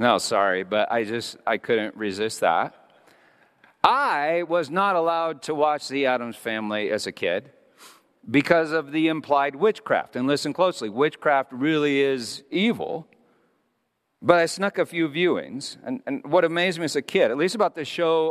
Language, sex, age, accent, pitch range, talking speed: English, male, 50-69, American, 115-170 Hz, 170 wpm